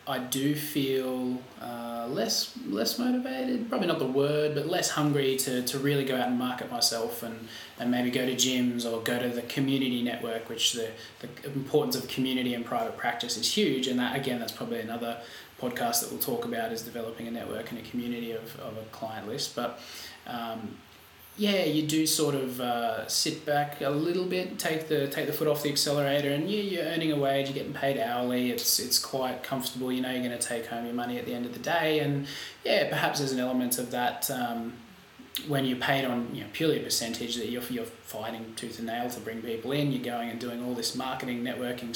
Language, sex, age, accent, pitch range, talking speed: English, male, 20-39, Australian, 120-140 Hz, 220 wpm